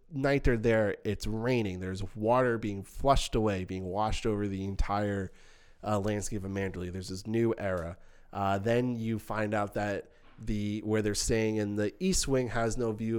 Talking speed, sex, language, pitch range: 180 wpm, male, English, 100-120 Hz